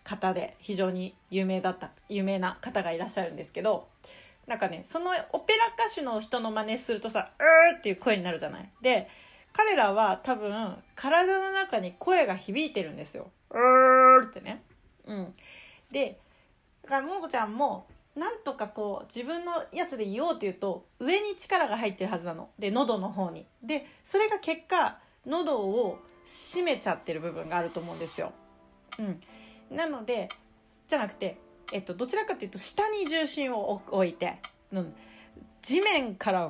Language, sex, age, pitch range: Japanese, female, 30-49, 195-325 Hz